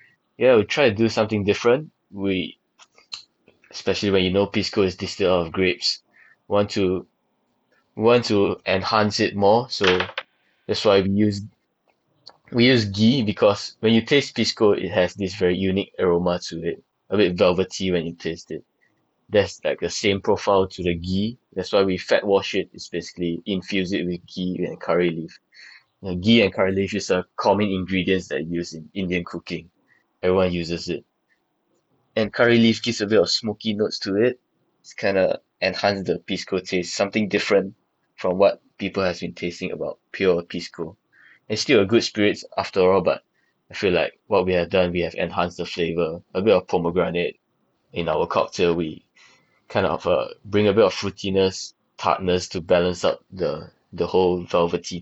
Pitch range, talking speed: 90-105 Hz, 180 wpm